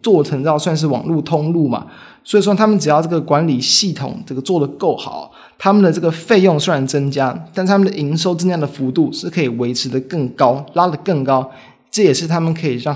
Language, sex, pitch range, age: Chinese, male, 130-165 Hz, 20-39